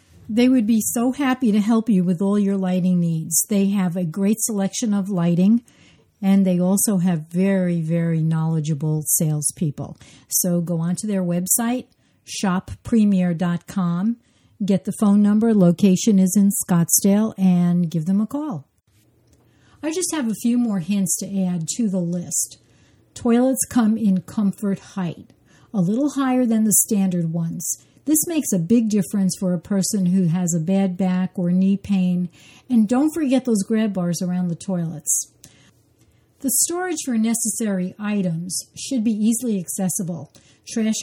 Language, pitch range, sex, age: English, 175-220 Hz, female, 60-79